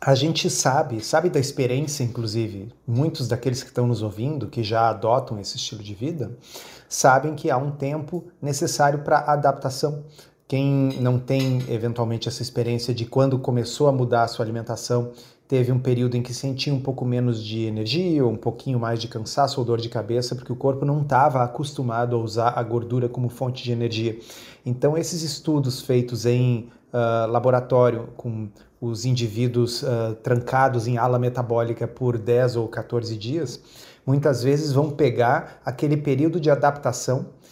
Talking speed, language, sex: 170 wpm, Portuguese, male